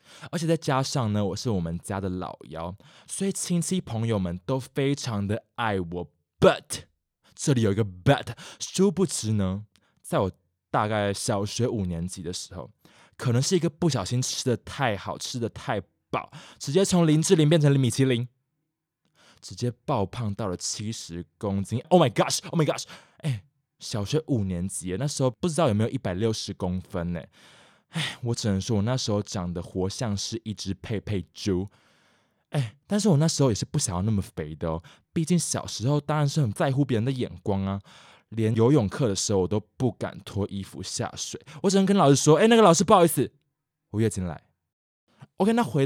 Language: Chinese